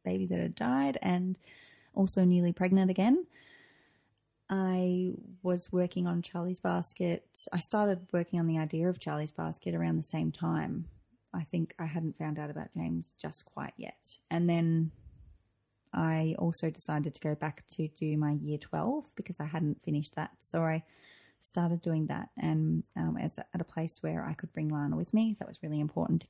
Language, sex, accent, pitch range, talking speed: English, female, Australian, 150-180 Hz, 185 wpm